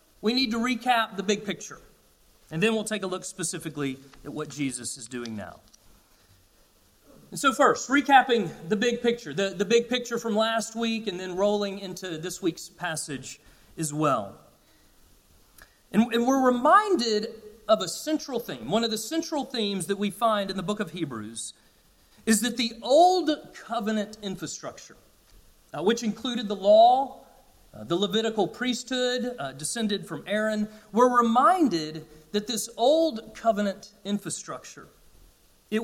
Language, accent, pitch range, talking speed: English, American, 180-245 Hz, 150 wpm